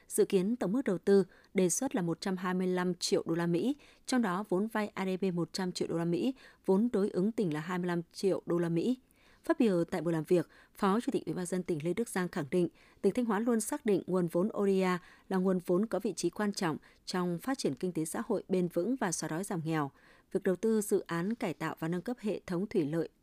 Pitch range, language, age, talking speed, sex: 175-215 Hz, Vietnamese, 20-39, 255 wpm, female